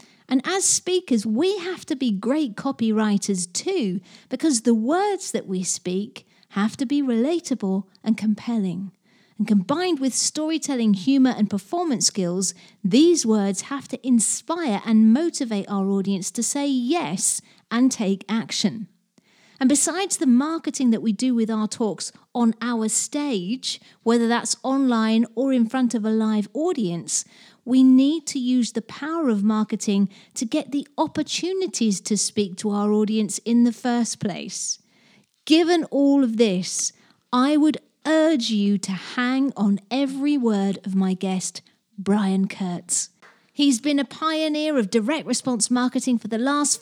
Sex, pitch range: female, 205-275 Hz